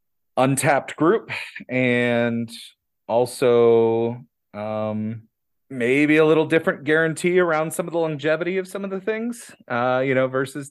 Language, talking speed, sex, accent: English, 135 wpm, male, American